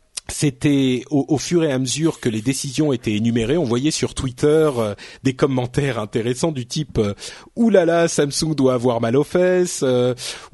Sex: male